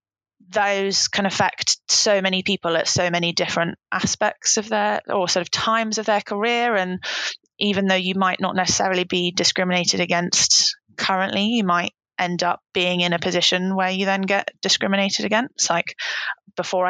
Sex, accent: female, British